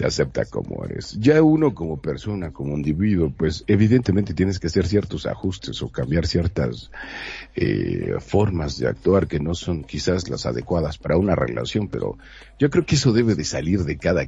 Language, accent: Spanish, Mexican